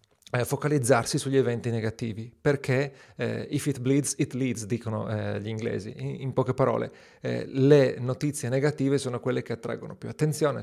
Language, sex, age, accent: Italian, male, 40-59, native